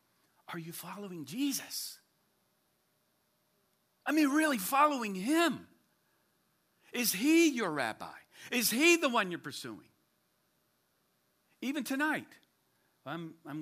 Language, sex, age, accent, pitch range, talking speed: English, male, 50-69, American, 185-260 Hz, 100 wpm